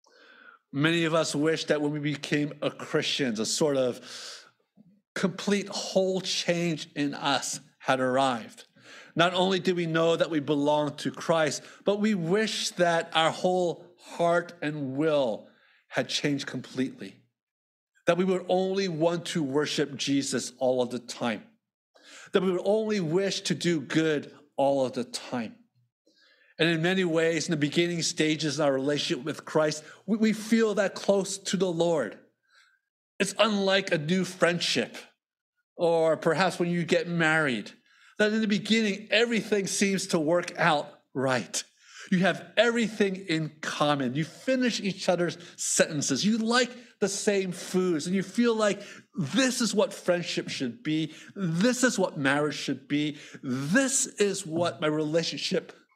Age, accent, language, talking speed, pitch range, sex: 50-69, American, English, 155 wpm, 155-200 Hz, male